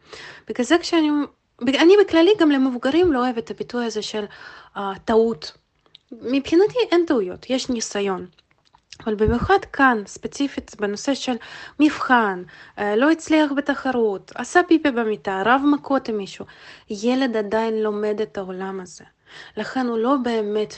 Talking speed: 135 wpm